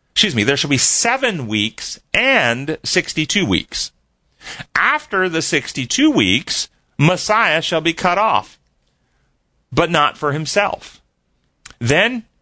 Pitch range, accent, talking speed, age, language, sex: 125-175 Hz, American, 115 wpm, 40-59, English, male